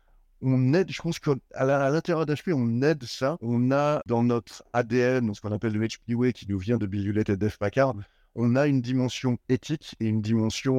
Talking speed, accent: 220 wpm, French